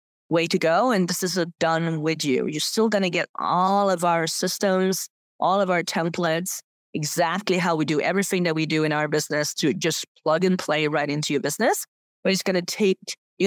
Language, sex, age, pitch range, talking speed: English, female, 30-49, 160-190 Hz, 220 wpm